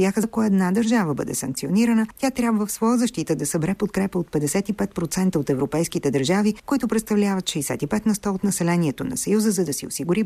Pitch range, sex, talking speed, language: 150-215 Hz, female, 180 wpm, Bulgarian